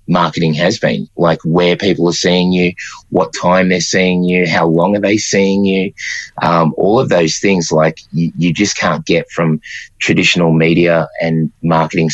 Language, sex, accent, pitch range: English, male, Australian, 80-90 Hz